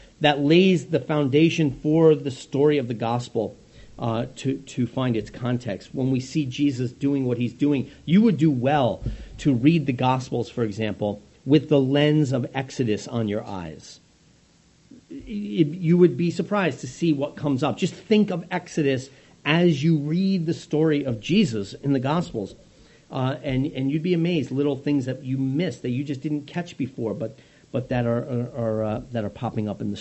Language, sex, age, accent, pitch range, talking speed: English, male, 40-59, American, 130-165 Hz, 200 wpm